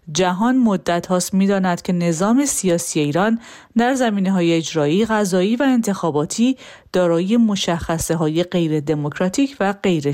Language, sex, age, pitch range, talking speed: Persian, female, 40-59, 170-235 Hz, 120 wpm